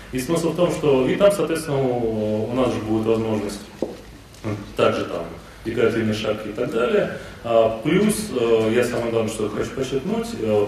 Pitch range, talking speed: 105-135 Hz, 165 wpm